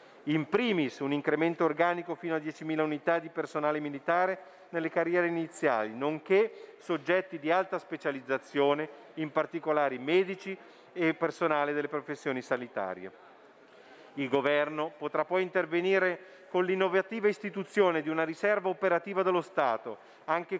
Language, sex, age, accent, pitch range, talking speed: Italian, male, 40-59, native, 145-185 Hz, 125 wpm